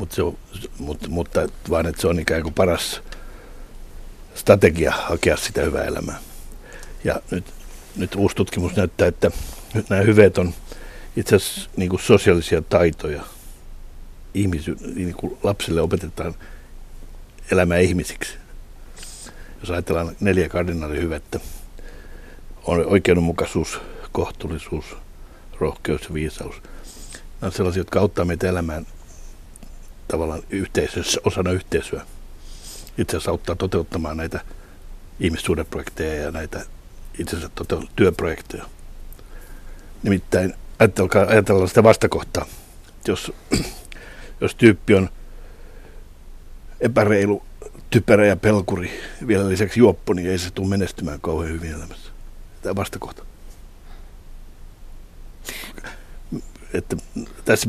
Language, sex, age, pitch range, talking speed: Finnish, male, 60-79, 80-100 Hz, 100 wpm